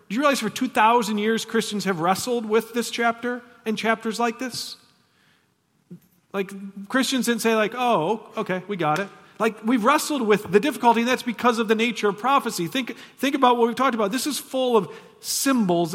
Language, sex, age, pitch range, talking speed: English, male, 40-59, 140-225 Hz, 195 wpm